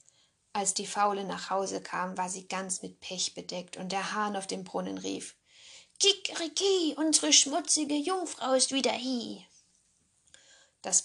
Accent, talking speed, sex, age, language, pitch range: German, 145 wpm, female, 10-29, German, 180-230 Hz